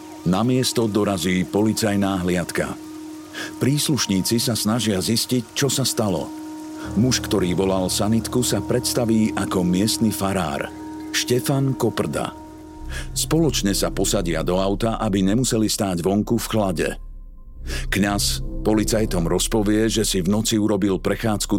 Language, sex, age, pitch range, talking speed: Slovak, male, 50-69, 95-120 Hz, 120 wpm